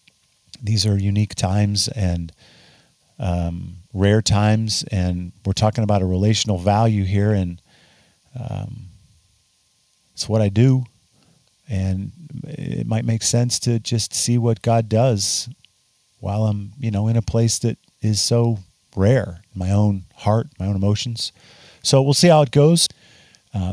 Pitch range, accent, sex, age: 95-120 Hz, American, male, 40-59